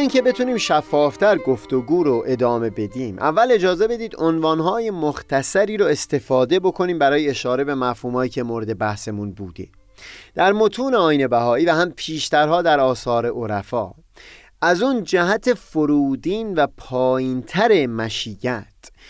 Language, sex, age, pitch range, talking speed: Persian, male, 30-49, 120-175 Hz, 125 wpm